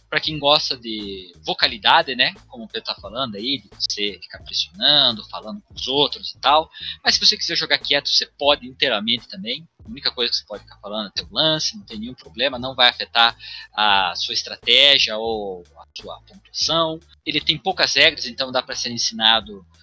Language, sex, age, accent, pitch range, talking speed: Portuguese, male, 20-39, Brazilian, 110-145 Hz, 200 wpm